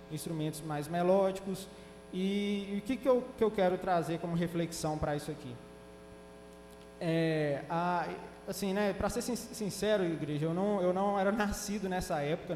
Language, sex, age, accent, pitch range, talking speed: Portuguese, male, 20-39, Brazilian, 155-210 Hz, 160 wpm